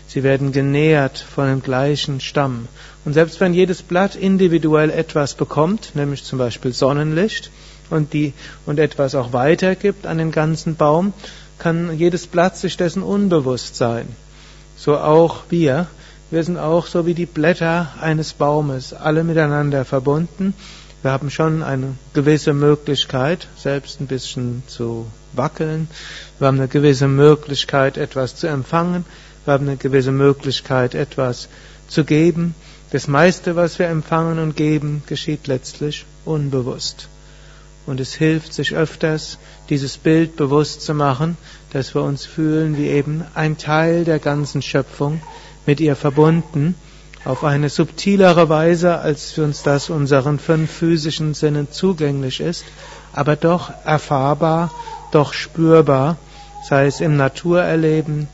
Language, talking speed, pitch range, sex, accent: German, 140 wpm, 140-165 Hz, male, German